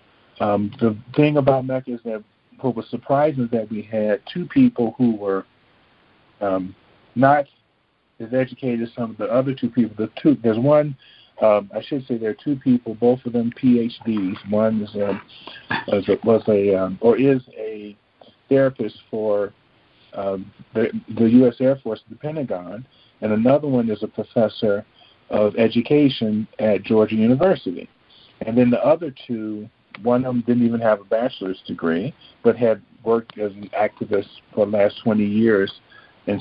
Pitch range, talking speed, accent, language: 105-130 Hz, 170 wpm, American, English